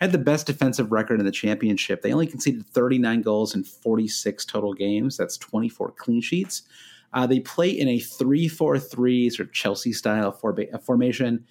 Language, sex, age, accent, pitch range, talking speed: English, male, 30-49, American, 105-140 Hz, 160 wpm